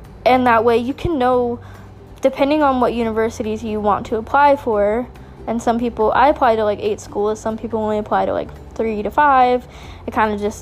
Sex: female